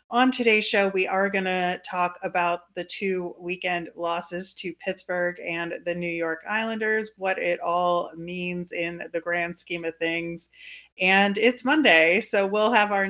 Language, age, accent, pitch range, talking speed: English, 30-49, American, 170-200 Hz, 170 wpm